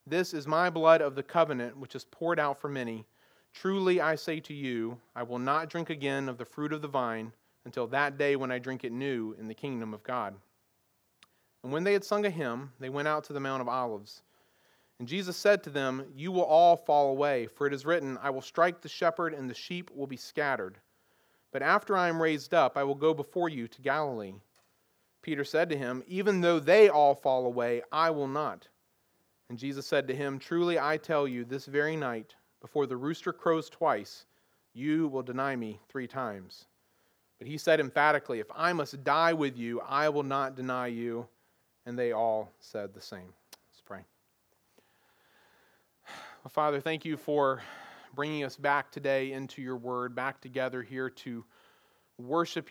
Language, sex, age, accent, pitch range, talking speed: English, male, 40-59, American, 125-160 Hz, 195 wpm